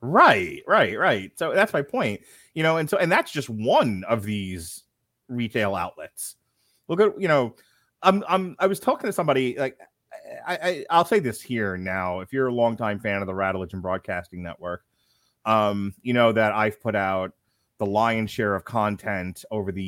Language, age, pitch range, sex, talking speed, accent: English, 30-49, 95-120 Hz, male, 195 wpm, American